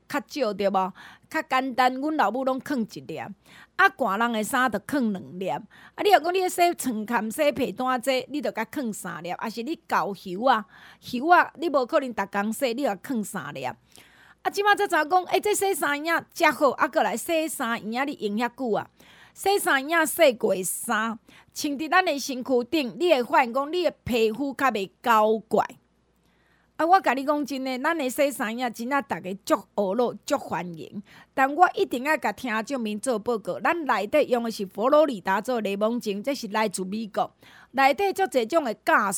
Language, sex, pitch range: Chinese, female, 215-300 Hz